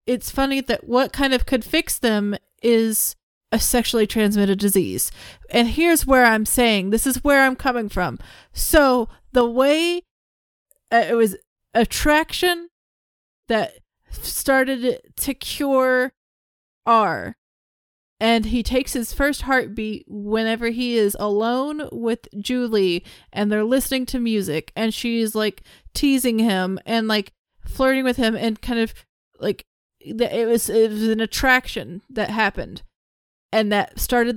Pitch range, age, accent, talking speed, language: 215-255 Hz, 30-49, American, 135 wpm, English